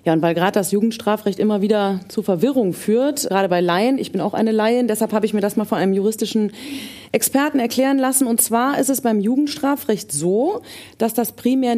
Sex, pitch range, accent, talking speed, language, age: female, 185-240 Hz, German, 210 wpm, German, 40-59